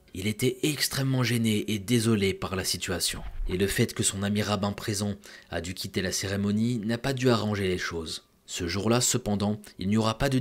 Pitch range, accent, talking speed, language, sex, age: 95-120 Hz, French, 210 wpm, French, male, 20-39